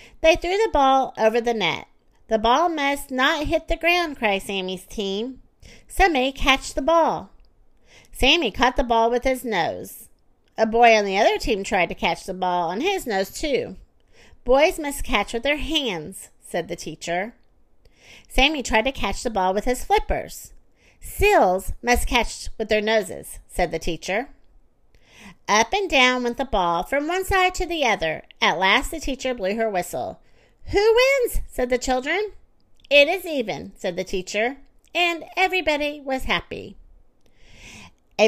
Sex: female